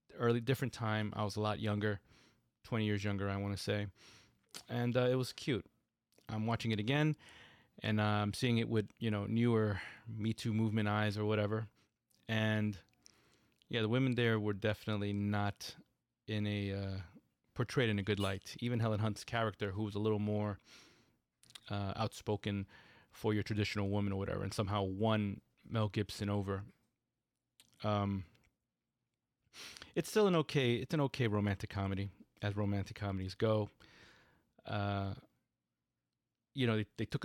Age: 20-39